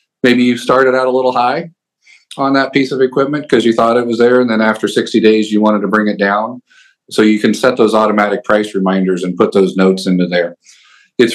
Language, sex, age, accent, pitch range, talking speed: English, male, 40-59, American, 100-120 Hz, 235 wpm